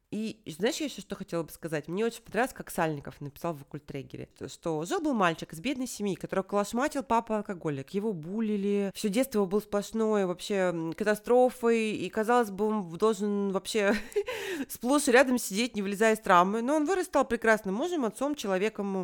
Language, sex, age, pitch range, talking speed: Russian, female, 30-49, 175-230 Hz, 175 wpm